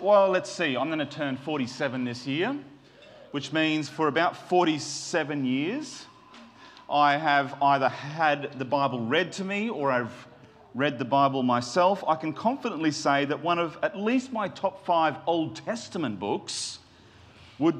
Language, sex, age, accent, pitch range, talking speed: English, male, 30-49, Australian, 125-180 Hz, 160 wpm